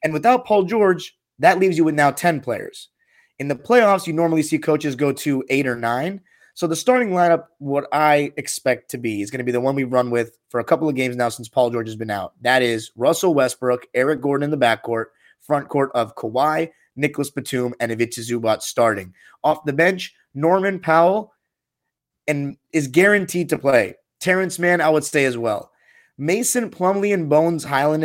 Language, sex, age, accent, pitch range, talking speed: English, male, 30-49, American, 130-185 Hz, 200 wpm